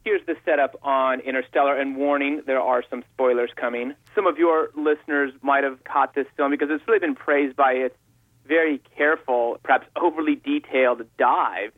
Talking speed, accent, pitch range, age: 175 wpm, American, 120-150 Hz, 30-49